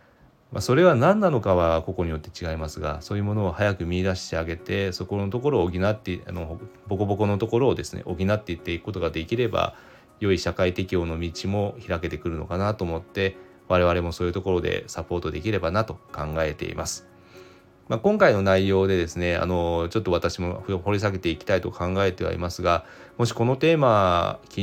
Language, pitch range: Japanese, 85-100 Hz